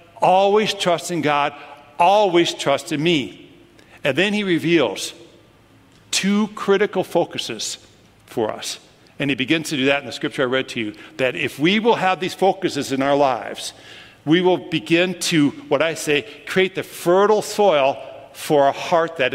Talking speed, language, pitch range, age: 170 wpm, English, 140-185 Hz, 60-79